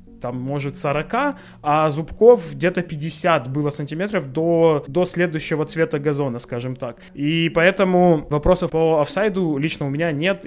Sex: male